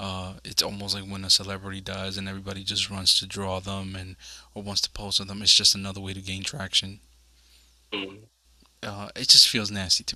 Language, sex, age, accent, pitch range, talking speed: English, male, 20-39, American, 65-100 Hz, 205 wpm